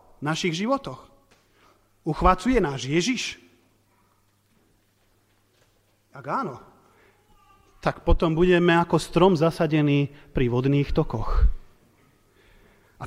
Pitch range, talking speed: 115-180 Hz, 80 wpm